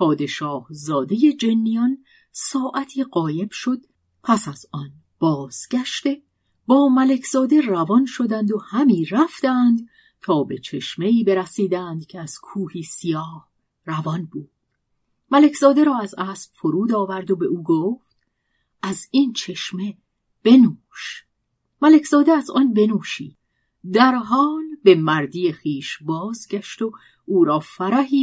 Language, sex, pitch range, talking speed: Persian, female, 165-255 Hz, 115 wpm